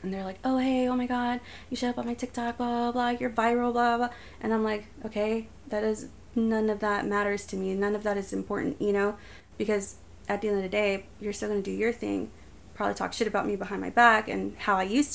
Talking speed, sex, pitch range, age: 260 wpm, female, 185-220 Hz, 20-39